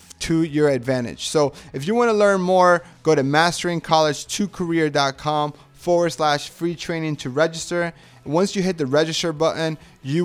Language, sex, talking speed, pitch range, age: English, male, 150 wpm, 145-205 Hz, 30-49